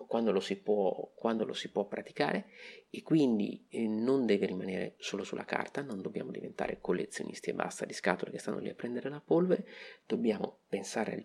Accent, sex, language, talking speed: native, male, Italian, 185 wpm